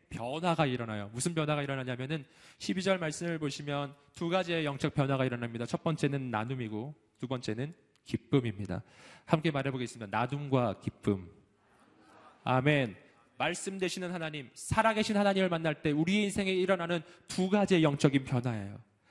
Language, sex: Korean, male